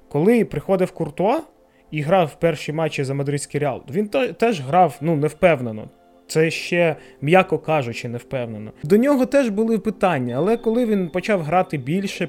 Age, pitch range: 20-39, 150-190 Hz